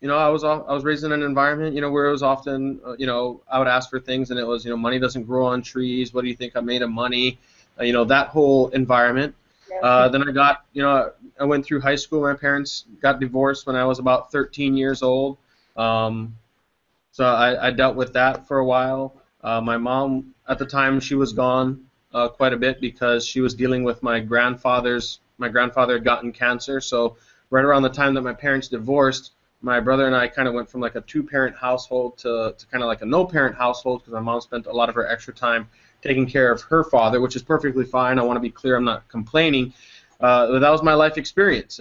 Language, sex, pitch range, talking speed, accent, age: English, male, 120-140 Hz, 240 wpm, American, 20-39